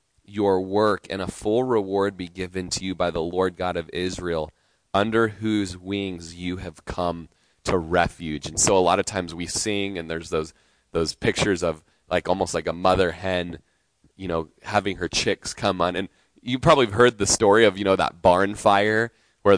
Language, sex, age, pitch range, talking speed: English, male, 20-39, 85-100 Hz, 200 wpm